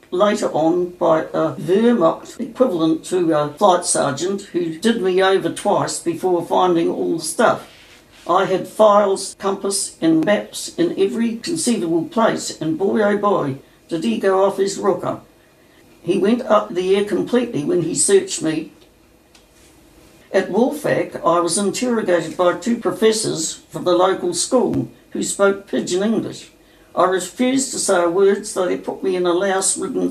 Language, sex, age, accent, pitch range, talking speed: English, female, 60-79, British, 170-225 Hz, 155 wpm